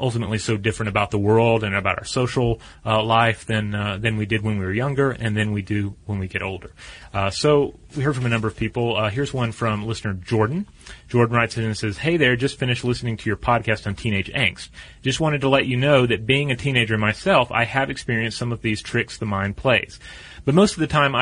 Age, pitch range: 30-49, 105-130 Hz